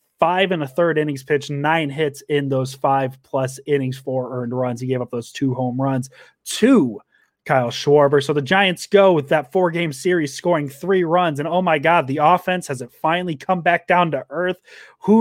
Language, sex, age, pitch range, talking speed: English, male, 30-49, 140-180 Hz, 200 wpm